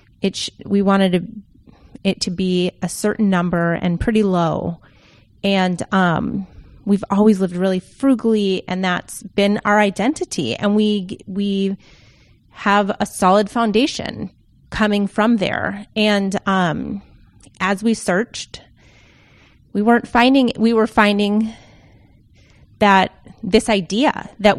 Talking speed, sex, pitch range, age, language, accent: 125 wpm, female, 185-220 Hz, 30-49, English, American